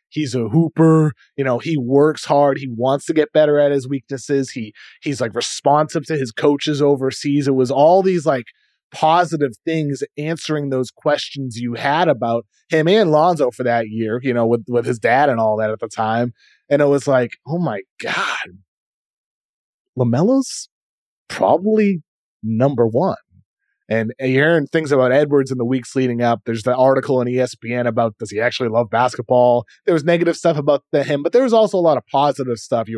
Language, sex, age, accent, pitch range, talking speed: English, male, 30-49, American, 120-155 Hz, 190 wpm